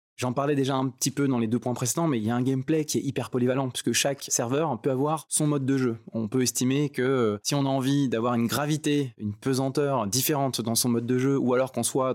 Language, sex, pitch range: French, male, 110-135 Hz